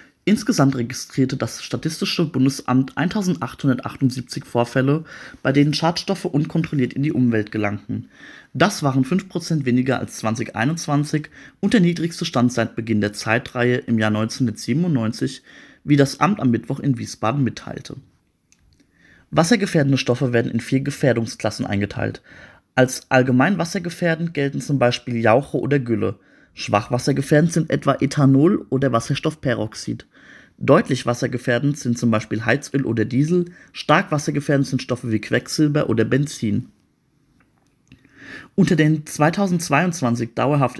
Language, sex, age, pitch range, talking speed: German, male, 30-49, 115-150 Hz, 120 wpm